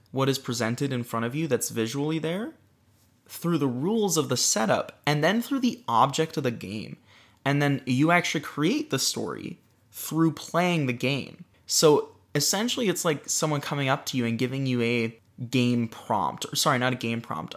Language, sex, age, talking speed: English, male, 20-39, 190 wpm